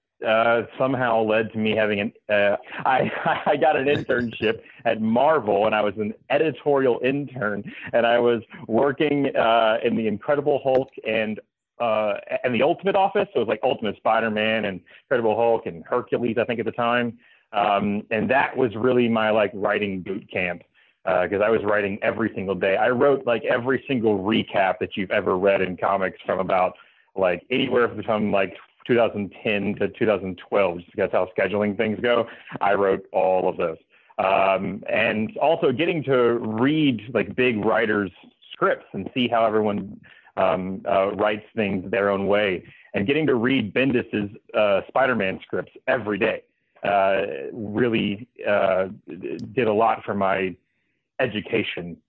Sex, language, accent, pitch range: male, English, American, 100-120 Hz